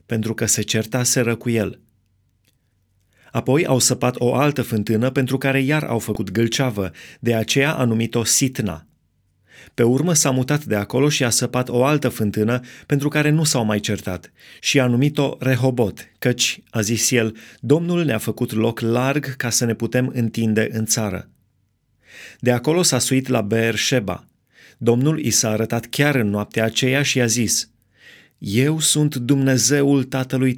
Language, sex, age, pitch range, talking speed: Romanian, male, 30-49, 110-130 Hz, 165 wpm